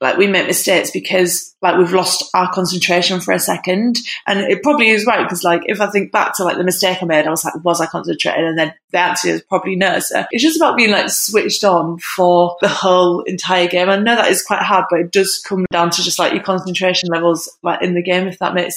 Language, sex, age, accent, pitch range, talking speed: English, female, 20-39, British, 175-195 Hz, 255 wpm